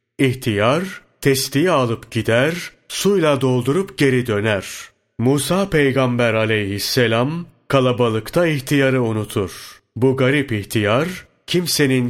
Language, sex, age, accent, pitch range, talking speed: Turkish, male, 40-59, native, 110-135 Hz, 90 wpm